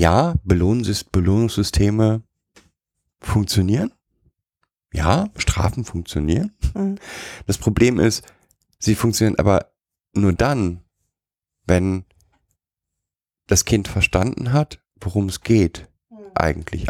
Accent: German